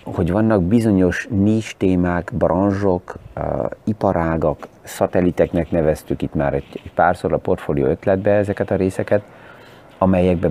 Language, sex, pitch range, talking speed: Hungarian, male, 80-95 Hz, 125 wpm